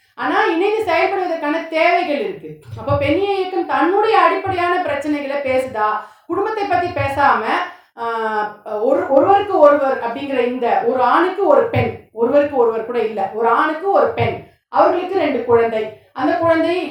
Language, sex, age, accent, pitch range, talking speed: Tamil, female, 30-49, native, 245-355 Hz, 120 wpm